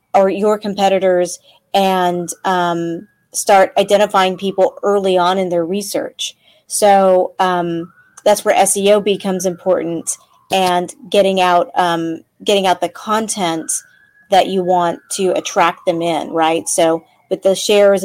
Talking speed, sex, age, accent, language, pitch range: 135 wpm, female, 30-49, American, English, 180-210 Hz